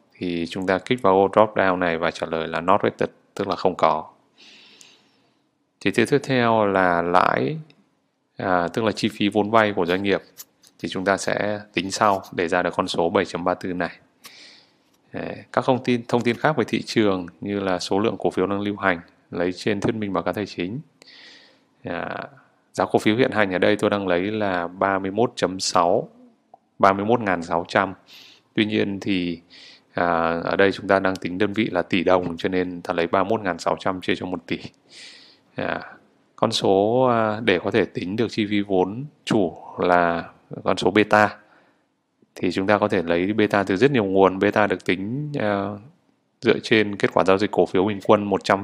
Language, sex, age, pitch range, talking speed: Vietnamese, male, 20-39, 90-110 Hz, 190 wpm